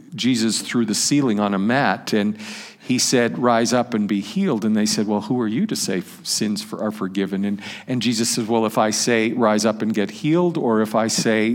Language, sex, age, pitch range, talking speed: English, male, 50-69, 115-175 Hz, 230 wpm